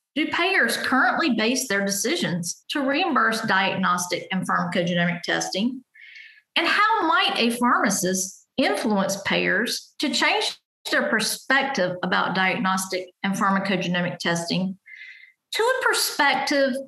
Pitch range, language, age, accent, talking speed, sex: 195-295 Hz, English, 50-69, American, 110 wpm, female